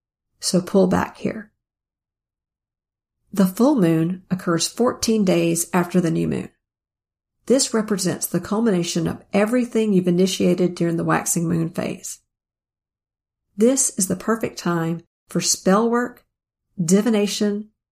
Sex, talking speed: female, 120 wpm